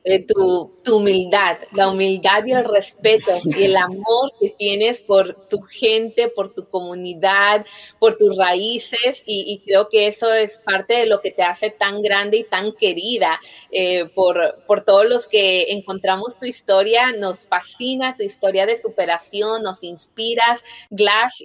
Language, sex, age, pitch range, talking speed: Spanish, female, 30-49, 190-245 Hz, 160 wpm